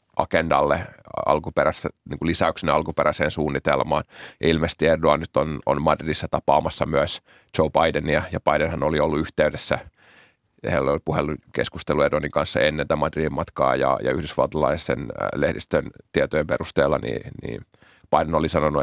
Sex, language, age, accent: male, Finnish, 30-49, native